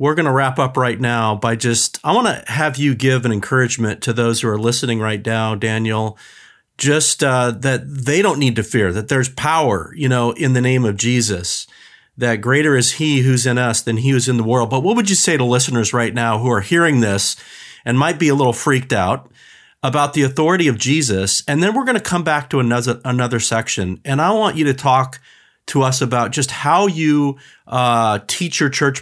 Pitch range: 115-145 Hz